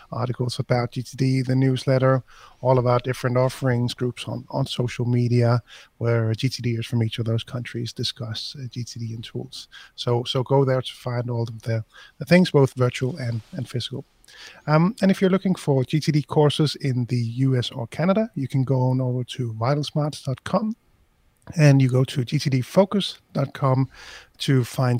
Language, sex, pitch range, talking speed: English, male, 125-145 Hz, 170 wpm